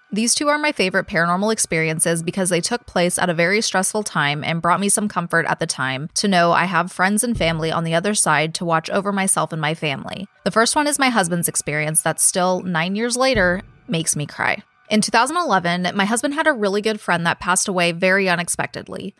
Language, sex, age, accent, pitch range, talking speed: English, female, 20-39, American, 165-220 Hz, 220 wpm